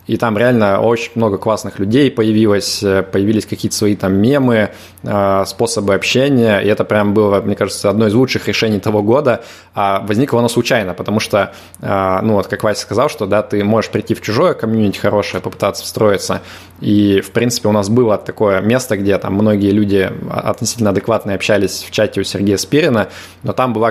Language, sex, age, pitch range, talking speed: Russian, male, 20-39, 100-115 Hz, 185 wpm